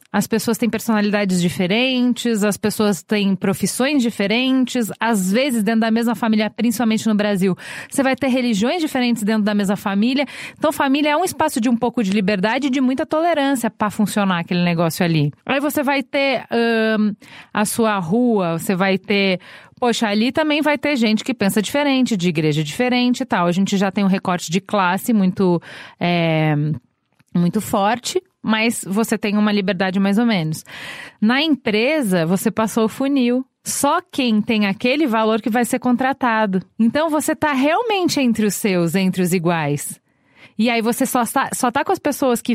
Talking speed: 180 wpm